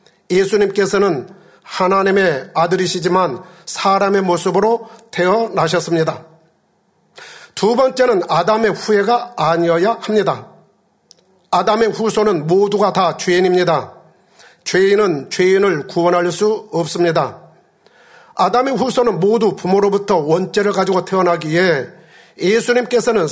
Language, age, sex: Korean, 40-59, male